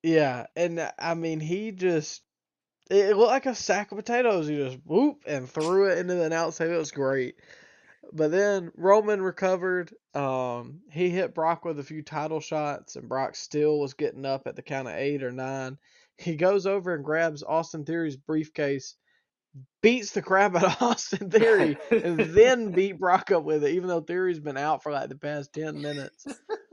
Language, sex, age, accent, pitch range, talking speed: English, male, 20-39, American, 140-175 Hz, 190 wpm